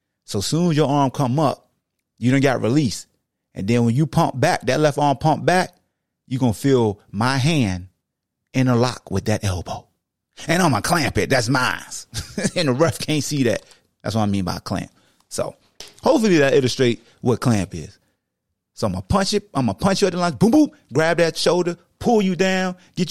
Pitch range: 115-180 Hz